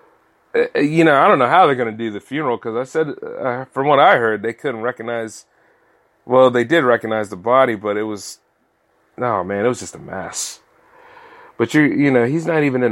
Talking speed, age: 225 wpm, 30-49